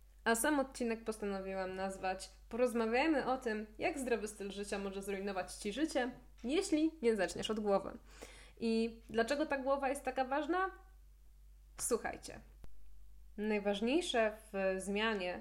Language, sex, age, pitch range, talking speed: Polish, female, 10-29, 195-230 Hz, 125 wpm